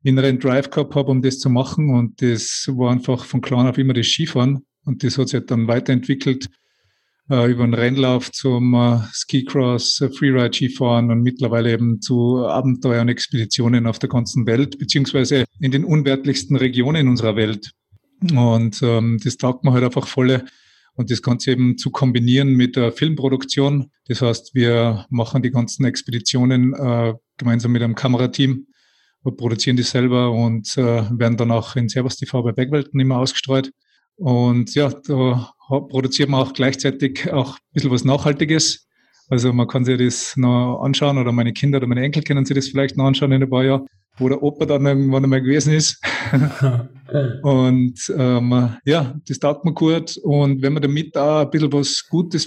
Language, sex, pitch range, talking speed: German, male, 125-140 Hz, 180 wpm